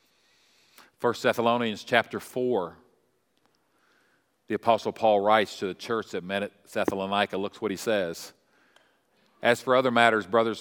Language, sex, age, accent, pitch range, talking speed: English, male, 50-69, American, 85-115 Hz, 135 wpm